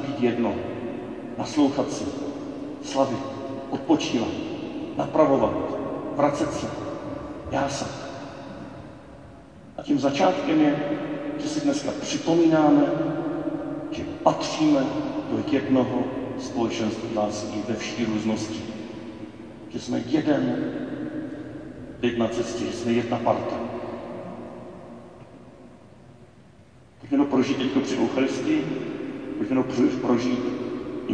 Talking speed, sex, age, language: 85 wpm, male, 50-69, Czech